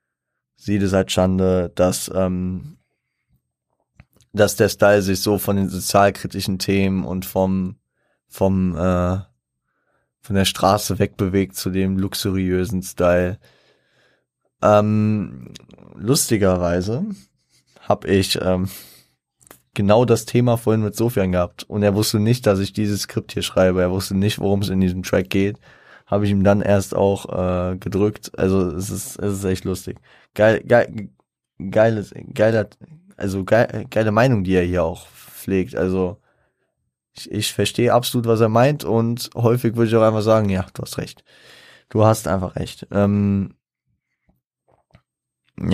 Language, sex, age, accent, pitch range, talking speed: German, male, 20-39, German, 95-110 Hz, 145 wpm